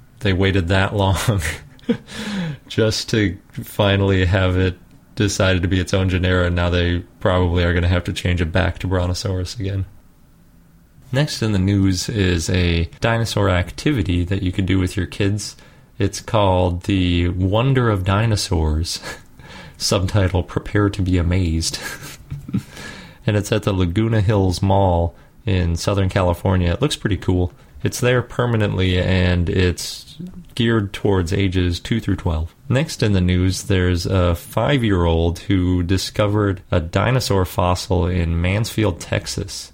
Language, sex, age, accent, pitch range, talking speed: English, male, 30-49, American, 90-105 Hz, 145 wpm